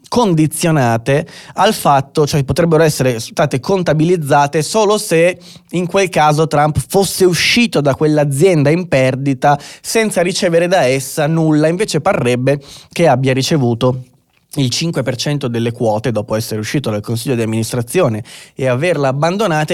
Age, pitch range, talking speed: 20-39, 125-170 Hz, 135 wpm